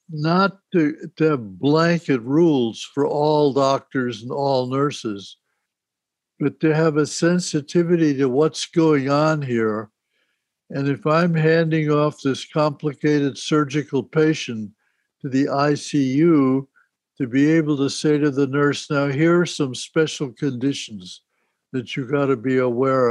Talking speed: 140 wpm